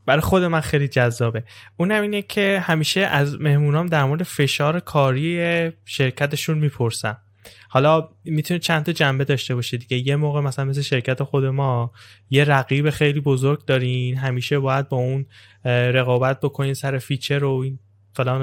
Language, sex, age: Persian, male, 10-29